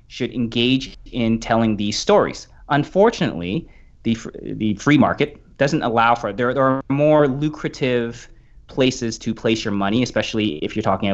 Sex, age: male, 30-49